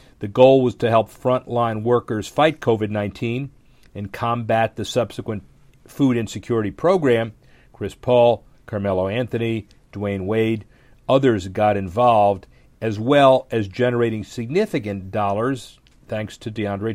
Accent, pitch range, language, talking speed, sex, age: American, 110-125 Hz, English, 125 wpm, male, 40-59